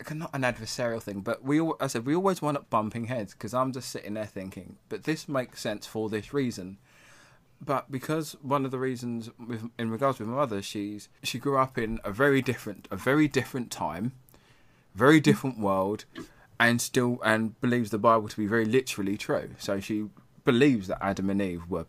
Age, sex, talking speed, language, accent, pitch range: 20-39, male, 205 wpm, English, British, 110-135 Hz